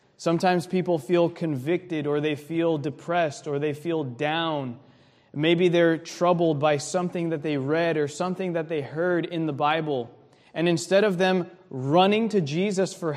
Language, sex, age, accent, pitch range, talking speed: English, male, 20-39, American, 150-185 Hz, 165 wpm